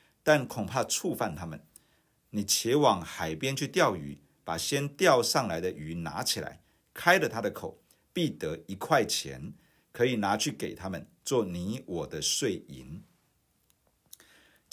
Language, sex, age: Chinese, male, 50-69